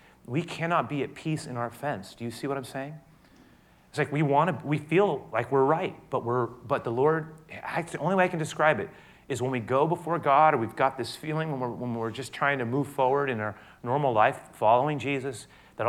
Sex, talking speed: male, 240 wpm